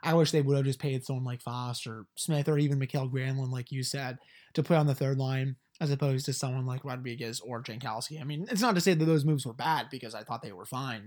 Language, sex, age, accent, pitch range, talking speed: English, male, 30-49, American, 135-160 Hz, 270 wpm